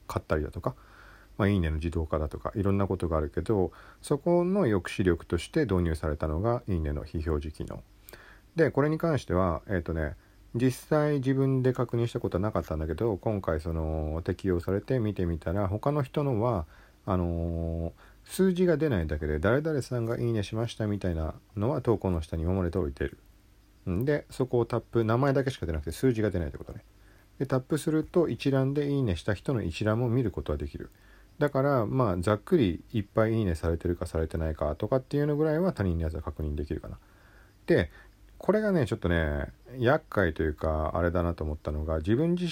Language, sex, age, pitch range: Japanese, male, 40-59, 85-125 Hz